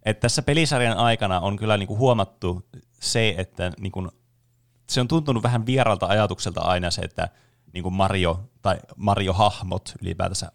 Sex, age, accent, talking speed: male, 30-49, native, 135 wpm